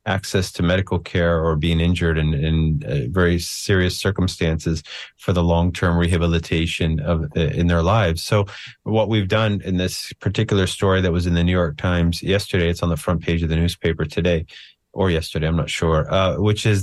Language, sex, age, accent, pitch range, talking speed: English, male, 30-49, American, 85-95 Hz, 195 wpm